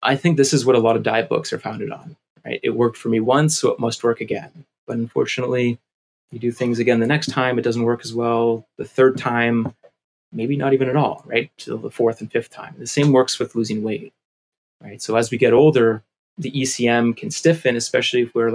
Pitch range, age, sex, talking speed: 115-135 Hz, 30-49, male, 235 wpm